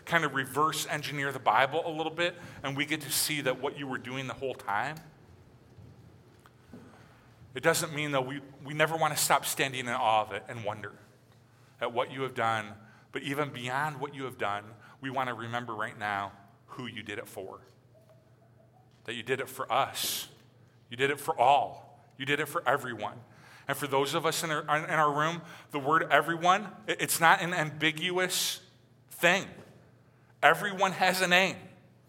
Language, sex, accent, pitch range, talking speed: English, male, American, 125-160 Hz, 185 wpm